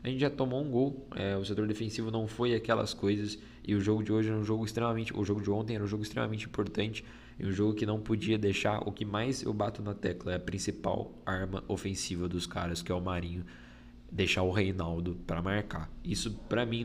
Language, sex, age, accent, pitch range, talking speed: Portuguese, male, 10-29, Brazilian, 100-115 Hz, 230 wpm